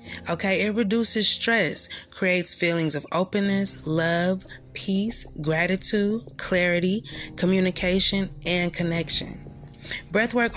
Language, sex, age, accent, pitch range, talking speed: English, female, 30-49, American, 155-200 Hz, 90 wpm